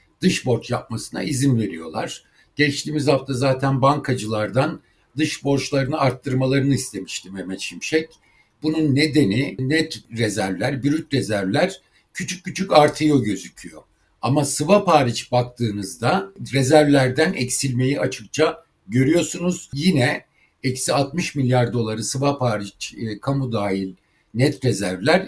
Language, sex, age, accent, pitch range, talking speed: Turkish, male, 60-79, native, 115-150 Hz, 105 wpm